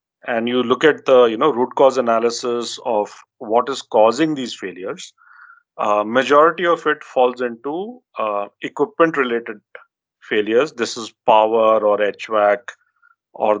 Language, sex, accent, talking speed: English, male, Indian, 140 wpm